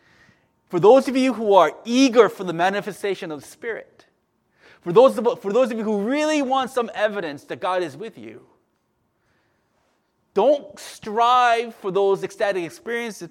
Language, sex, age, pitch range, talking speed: English, male, 30-49, 180-225 Hz, 155 wpm